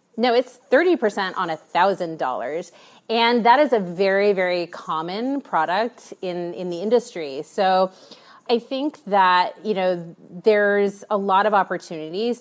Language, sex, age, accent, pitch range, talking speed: English, female, 30-49, American, 180-235 Hz, 140 wpm